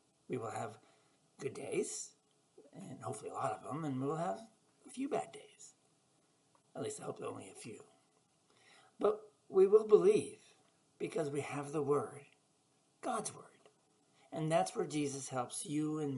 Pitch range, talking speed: 145-210 Hz, 160 wpm